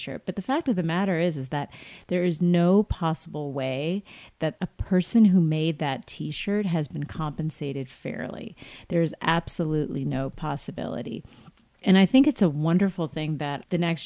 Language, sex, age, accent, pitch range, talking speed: English, female, 30-49, American, 150-180 Hz, 170 wpm